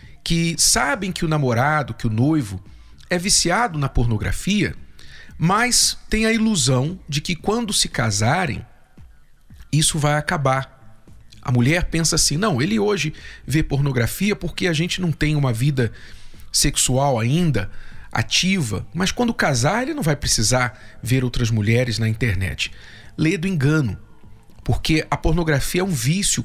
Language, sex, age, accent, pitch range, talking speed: Portuguese, male, 40-59, Brazilian, 120-175 Hz, 145 wpm